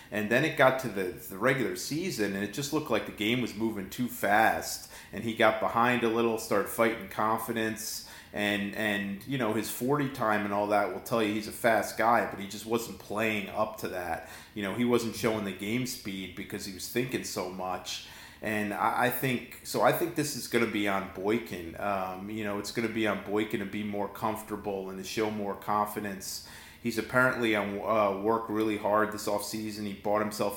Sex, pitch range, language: male, 100-115 Hz, English